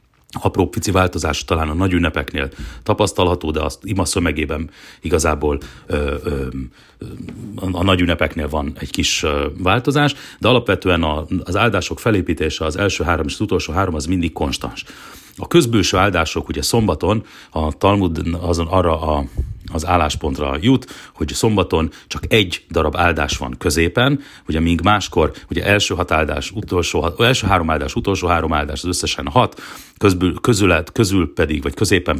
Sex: male